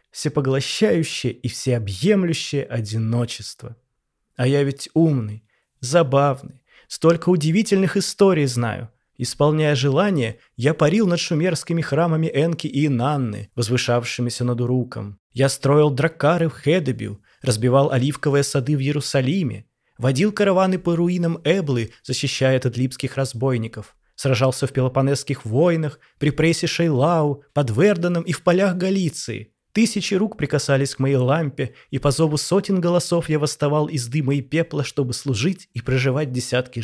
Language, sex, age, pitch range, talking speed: Russian, male, 20-39, 125-170 Hz, 130 wpm